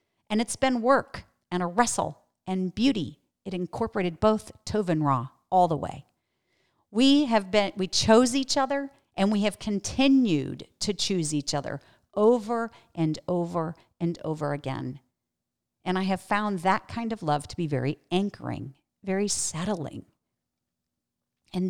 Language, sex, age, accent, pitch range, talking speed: English, female, 40-59, American, 155-220 Hz, 145 wpm